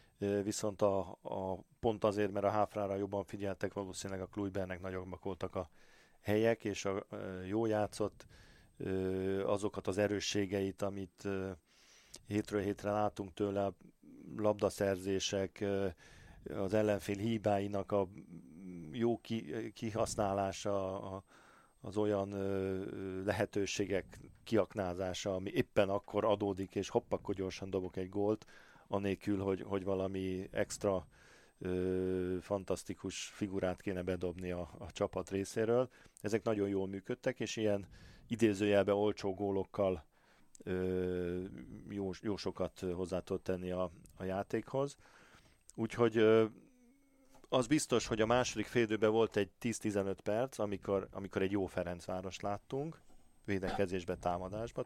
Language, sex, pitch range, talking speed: Hungarian, male, 95-105 Hz, 115 wpm